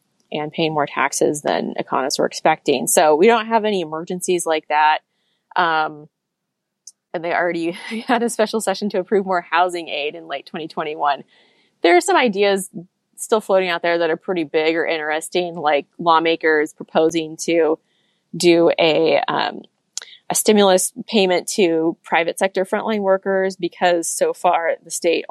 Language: English